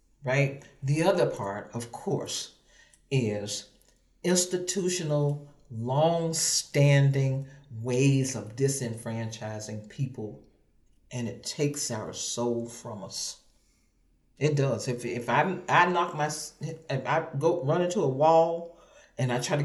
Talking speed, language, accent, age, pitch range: 120 wpm, English, American, 40-59, 120-160 Hz